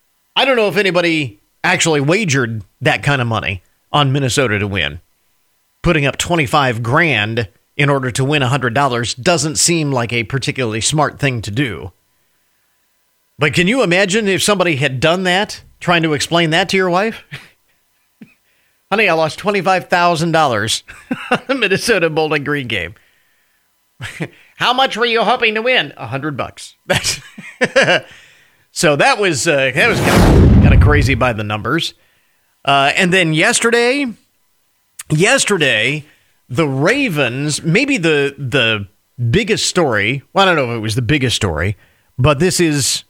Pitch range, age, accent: 125-180 Hz, 40-59, American